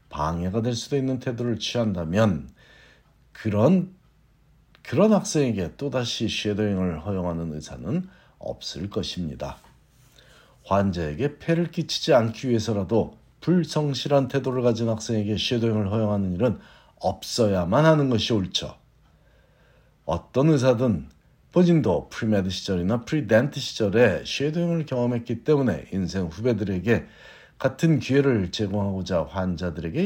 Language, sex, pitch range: Korean, male, 100-140 Hz